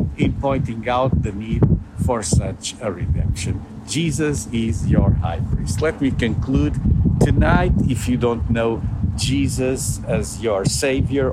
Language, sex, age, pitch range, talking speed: English, male, 50-69, 105-135 Hz, 140 wpm